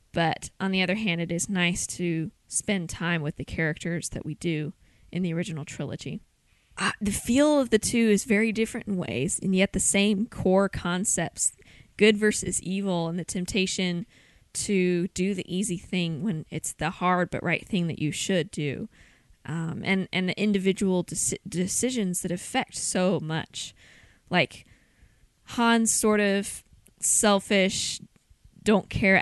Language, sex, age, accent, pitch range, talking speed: English, female, 20-39, American, 170-200 Hz, 160 wpm